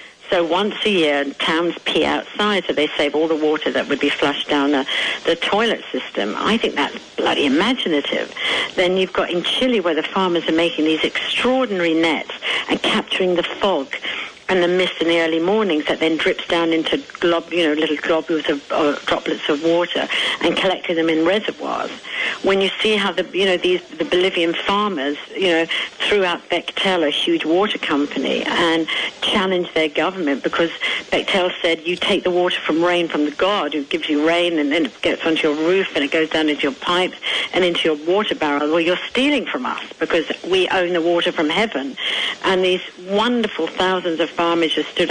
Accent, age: British, 60-79